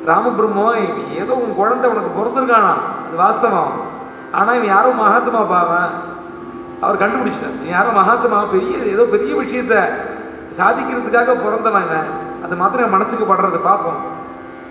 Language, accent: Tamil, native